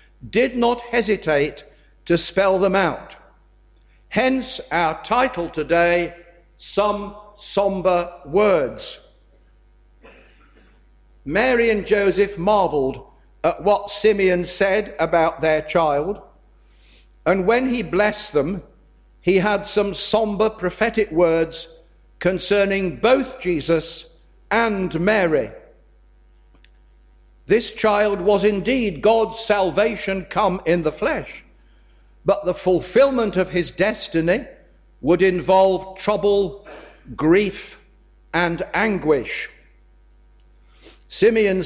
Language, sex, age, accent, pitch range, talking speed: English, male, 60-79, British, 175-210 Hz, 90 wpm